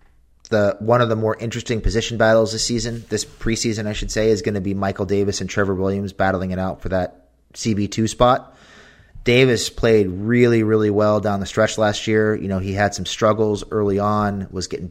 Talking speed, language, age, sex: 210 wpm, English, 30-49, male